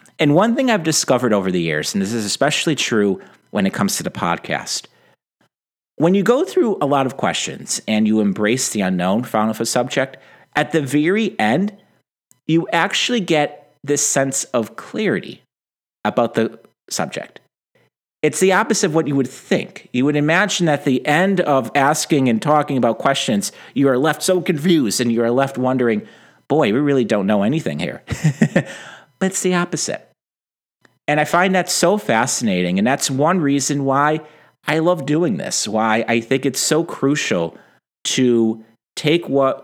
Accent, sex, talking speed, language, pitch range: American, male, 175 wpm, English, 115-165 Hz